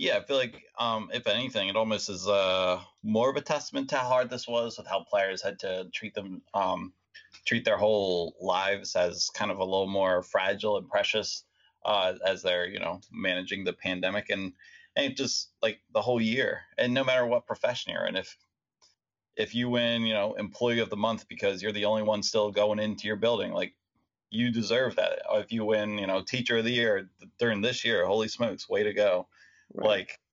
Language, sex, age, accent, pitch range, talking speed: English, male, 30-49, American, 95-115 Hz, 210 wpm